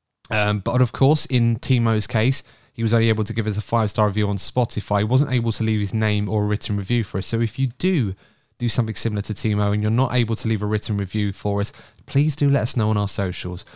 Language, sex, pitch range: English, male, 105-130 Hz